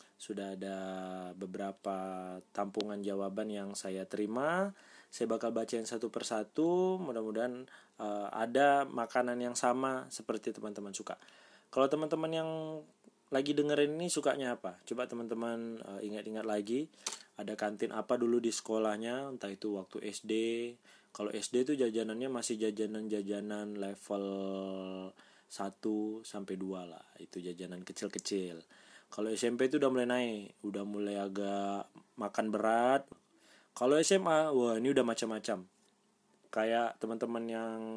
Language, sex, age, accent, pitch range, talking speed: Indonesian, male, 20-39, native, 105-135 Hz, 120 wpm